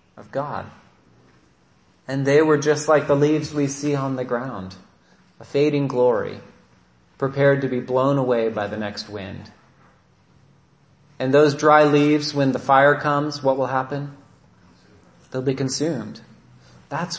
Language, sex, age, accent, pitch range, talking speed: English, male, 30-49, American, 130-160 Hz, 145 wpm